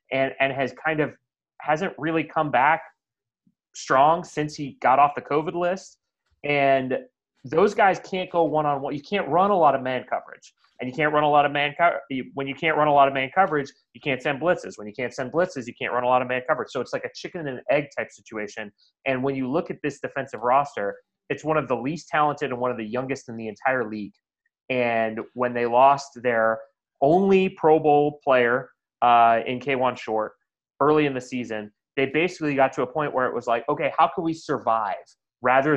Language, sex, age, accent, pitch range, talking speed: English, male, 30-49, American, 125-155 Hz, 220 wpm